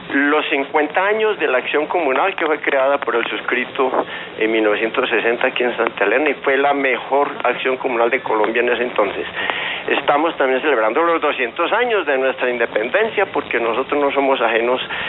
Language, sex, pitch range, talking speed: Spanish, male, 125-160 Hz, 175 wpm